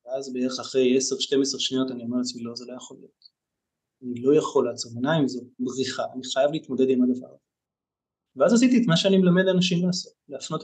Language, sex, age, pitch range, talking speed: Hebrew, male, 30-49, 130-165 Hz, 185 wpm